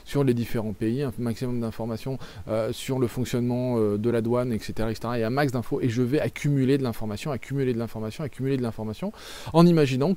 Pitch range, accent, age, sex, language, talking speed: 120-155 Hz, French, 20-39, male, French, 210 wpm